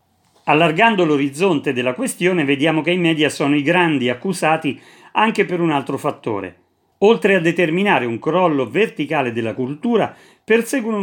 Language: Italian